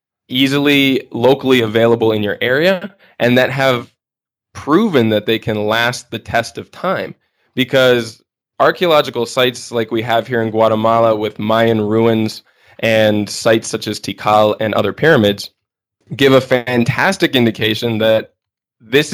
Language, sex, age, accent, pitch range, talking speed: English, male, 20-39, American, 110-140 Hz, 140 wpm